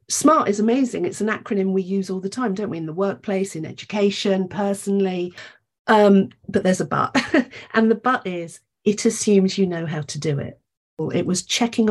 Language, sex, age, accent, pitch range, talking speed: English, female, 50-69, British, 180-230 Hz, 195 wpm